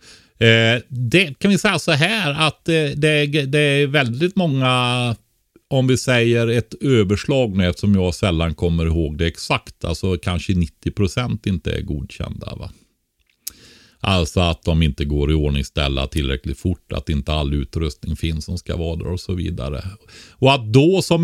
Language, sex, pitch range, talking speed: Swedish, male, 80-115 Hz, 155 wpm